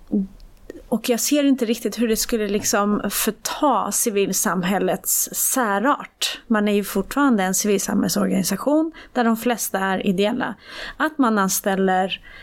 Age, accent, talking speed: 30-49, native, 125 wpm